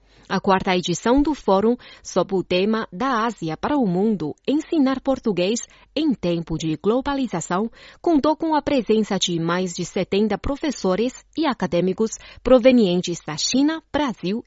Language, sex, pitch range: Chinese, female, 185-275 Hz